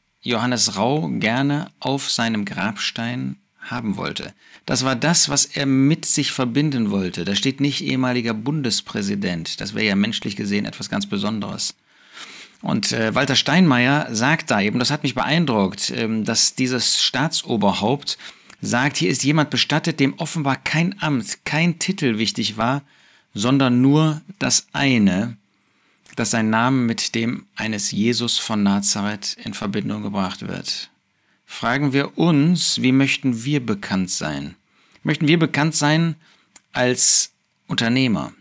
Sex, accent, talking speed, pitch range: male, German, 140 wpm, 115-150 Hz